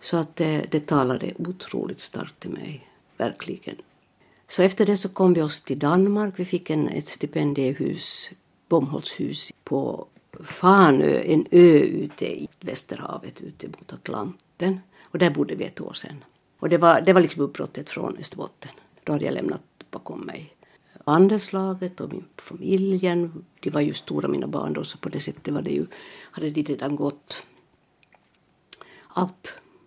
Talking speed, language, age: 160 wpm, Swedish, 60-79